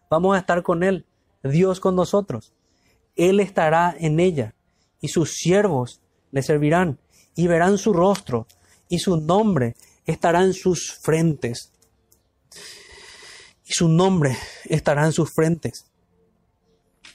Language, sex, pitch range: Spanish, male, 120-180 Hz